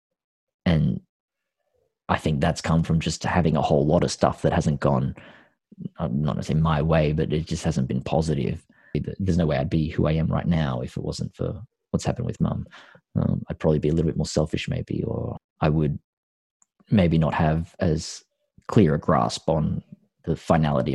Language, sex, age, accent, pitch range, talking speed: English, male, 30-49, Australian, 80-95 Hz, 190 wpm